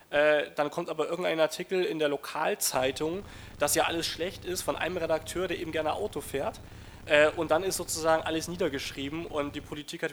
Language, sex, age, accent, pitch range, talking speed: German, male, 30-49, German, 135-160 Hz, 185 wpm